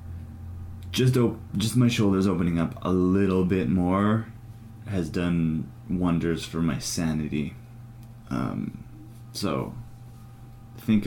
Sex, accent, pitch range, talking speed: male, American, 90-115 Hz, 110 wpm